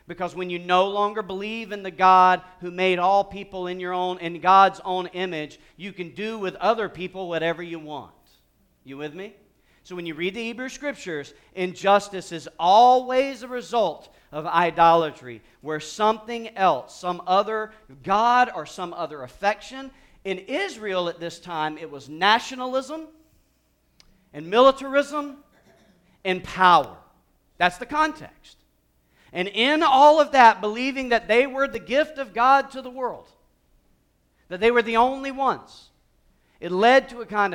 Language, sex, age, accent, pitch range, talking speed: English, male, 40-59, American, 150-220 Hz, 155 wpm